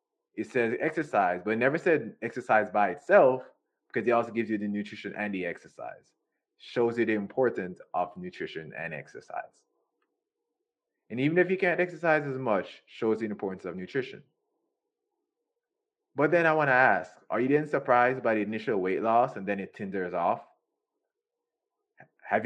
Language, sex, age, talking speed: English, male, 20-39, 165 wpm